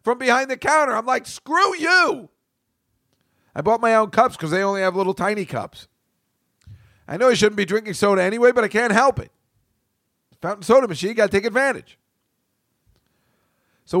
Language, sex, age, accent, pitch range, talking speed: English, male, 50-69, American, 130-190 Hz, 175 wpm